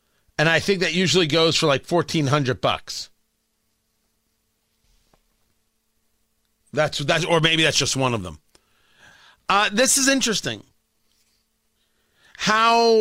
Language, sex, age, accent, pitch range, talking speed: English, male, 40-59, American, 145-195 Hz, 105 wpm